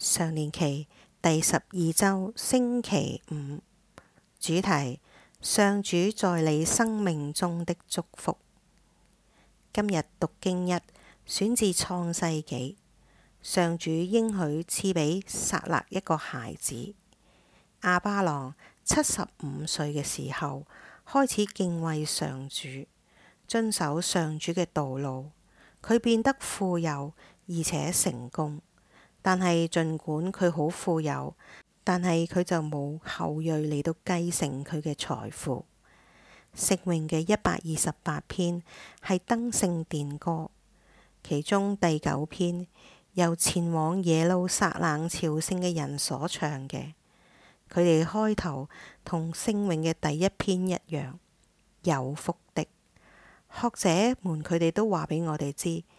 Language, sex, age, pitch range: English, female, 50-69, 155-185 Hz